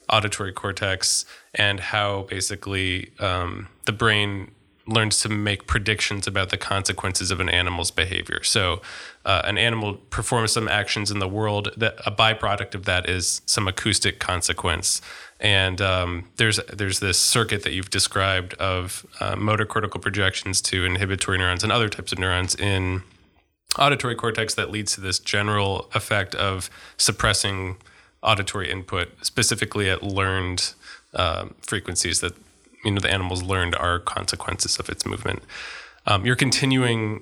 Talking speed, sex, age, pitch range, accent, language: 150 wpm, male, 20-39, 95-110 Hz, American, English